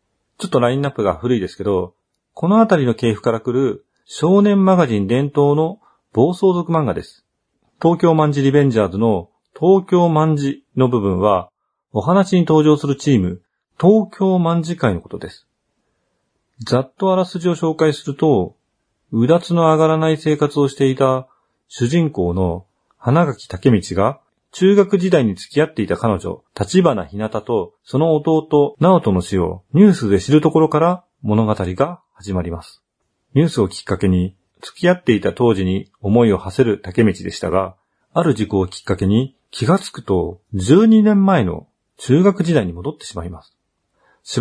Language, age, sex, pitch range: Japanese, 40-59, male, 100-160 Hz